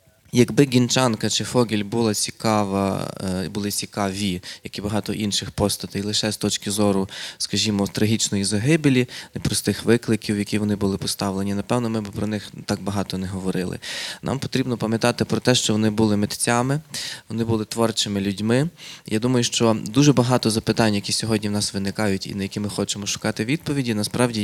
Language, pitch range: Ukrainian, 100-120 Hz